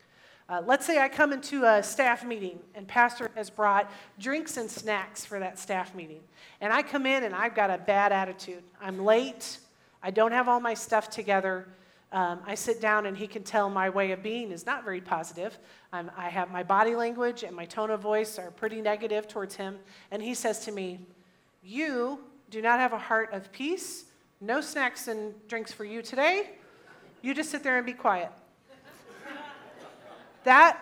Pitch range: 200-270 Hz